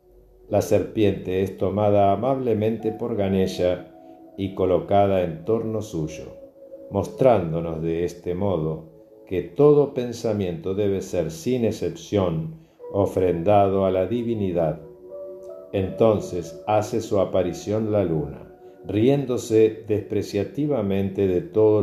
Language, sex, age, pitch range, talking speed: Spanish, male, 50-69, 95-120 Hz, 100 wpm